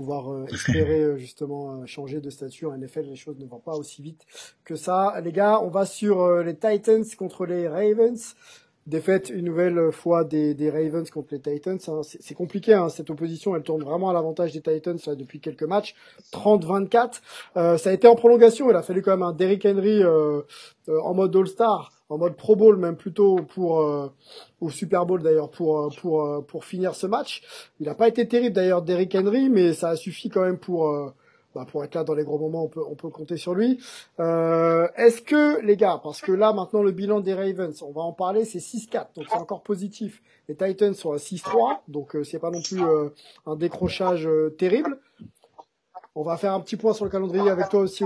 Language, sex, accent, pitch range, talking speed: French, male, French, 155-205 Hz, 220 wpm